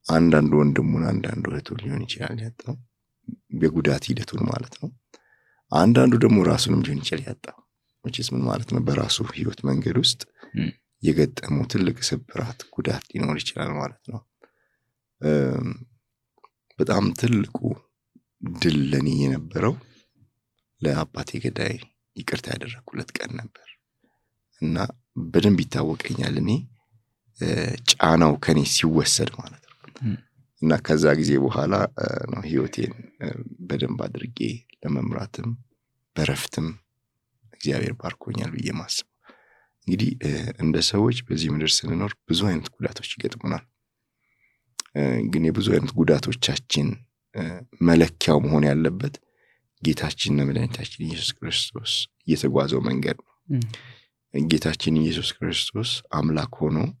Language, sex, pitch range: English, male, 80-120 Hz